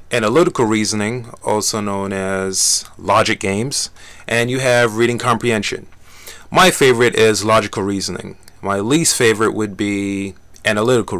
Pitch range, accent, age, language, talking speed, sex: 100-135 Hz, American, 30-49, English, 125 wpm, male